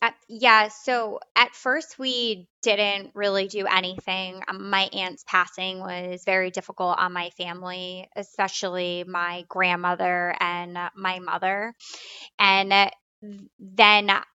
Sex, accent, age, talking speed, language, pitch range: female, American, 20-39, 115 wpm, English, 185-205 Hz